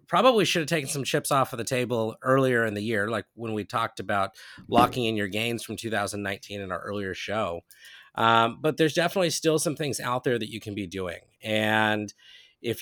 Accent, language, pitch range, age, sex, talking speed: American, English, 105-140 Hz, 30-49, male, 210 wpm